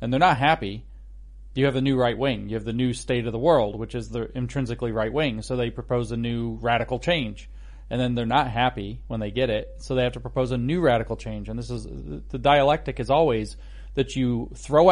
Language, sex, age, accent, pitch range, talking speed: English, male, 40-59, American, 115-135 Hz, 235 wpm